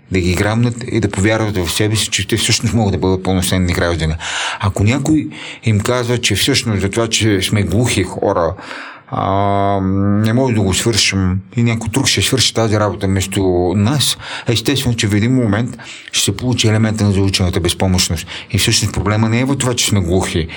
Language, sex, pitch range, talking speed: Bulgarian, male, 95-120 Hz, 195 wpm